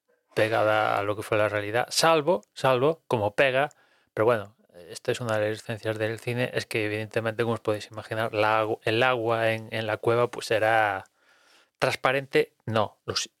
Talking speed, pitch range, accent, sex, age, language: 170 wpm, 105-130 Hz, Spanish, male, 30-49, Spanish